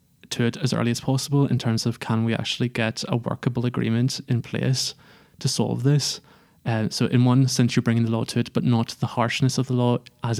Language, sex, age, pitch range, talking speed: English, male, 20-39, 115-130 Hz, 230 wpm